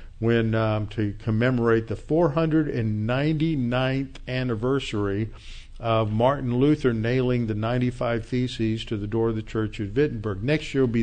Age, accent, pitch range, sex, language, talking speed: 50-69, American, 110-135 Hz, male, English, 140 wpm